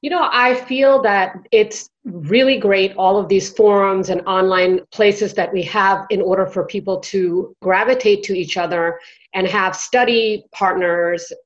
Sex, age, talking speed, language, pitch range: female, 30-49, 160 wpm, English, 175-215 Hz